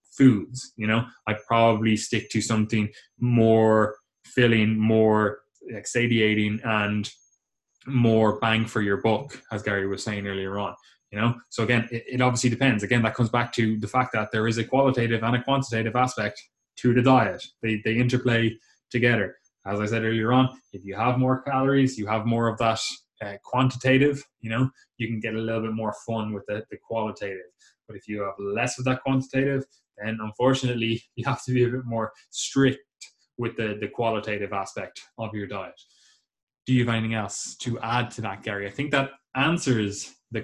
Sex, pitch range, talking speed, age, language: male, 110-125 Hz, 190 wpm, 20-39, English